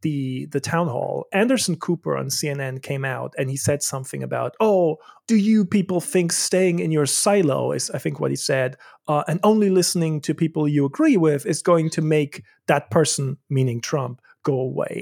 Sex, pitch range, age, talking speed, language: male, 140-185 Hz, 30-49, 195 wpm, English